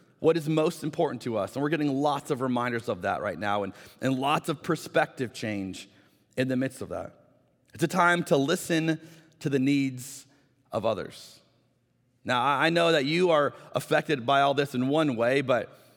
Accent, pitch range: American, 130-165 Hz